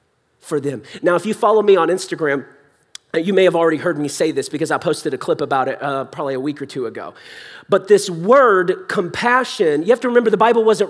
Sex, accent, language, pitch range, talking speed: male, American, English, 190-260 Hz, 215 wpm